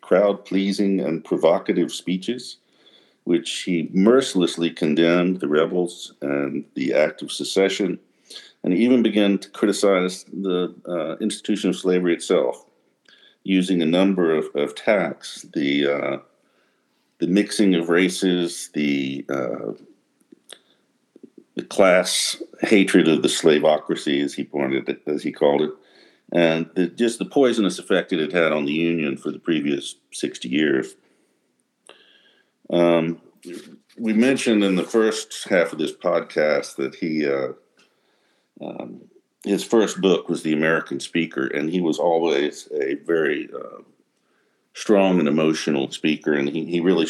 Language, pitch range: English, 75-100 Hz